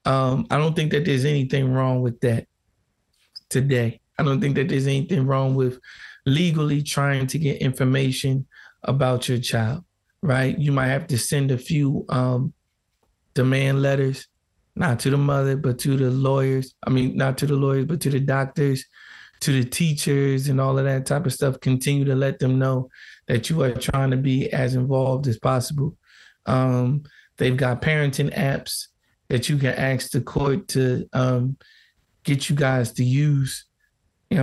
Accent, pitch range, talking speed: American, 130-145 Hz, 175 wpm